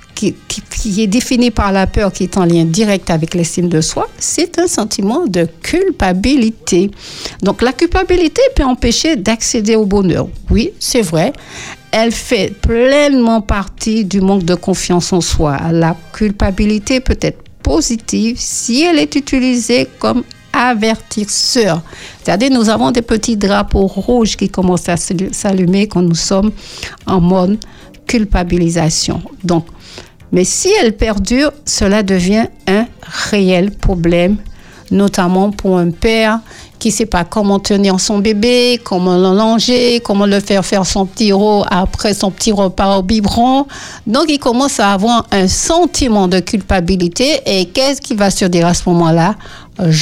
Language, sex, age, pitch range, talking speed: French, female, 60-79, 185-240 Hz, 150 wpm